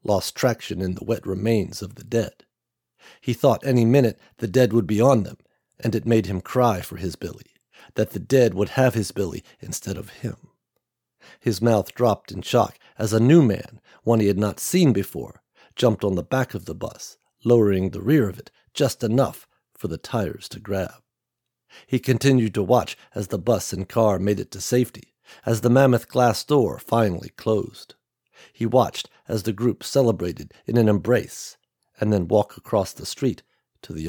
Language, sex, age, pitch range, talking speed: English, male, 50-69, 100-125 Hz, 190 wpm